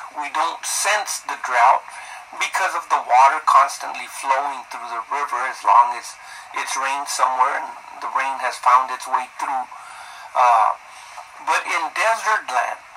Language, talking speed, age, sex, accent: English, 155 wpm, 50-69, male, American